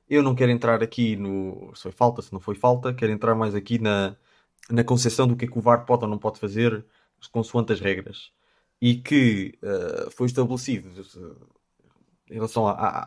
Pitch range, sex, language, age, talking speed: 110-135 Hz, male, Portuguese, 20-39, 200 wpm